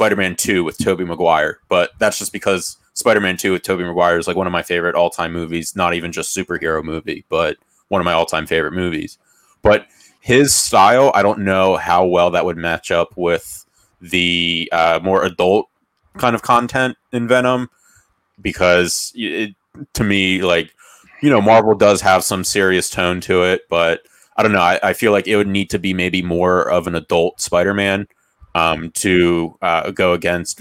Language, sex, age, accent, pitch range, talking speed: English, male, 20-39, American, 85-105 Hz, 195 wpm